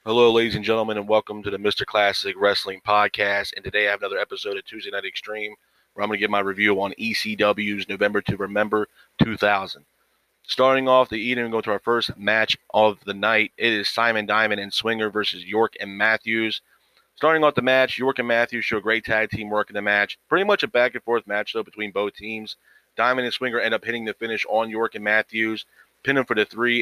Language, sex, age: English, male, 30-49